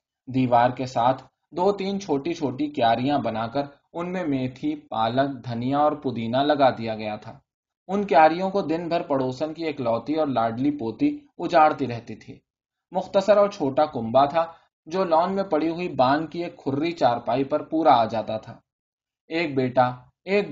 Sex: male